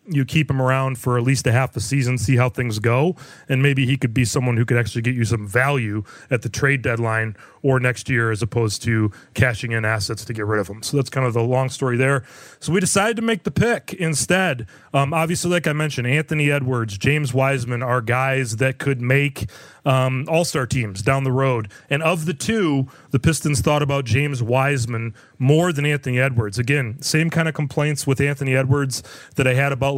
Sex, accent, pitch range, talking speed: male, American, 125-145 Hz, 215 wpm